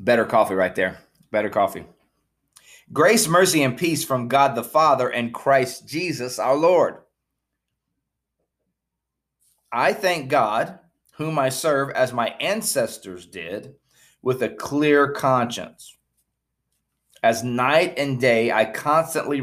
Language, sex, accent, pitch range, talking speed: English, male, American, 120-155 Hz, 120 wpm